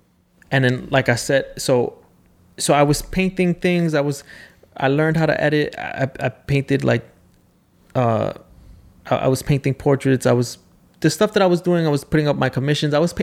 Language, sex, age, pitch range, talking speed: English, male, 20-39, 125-150 Hz, 195 wpm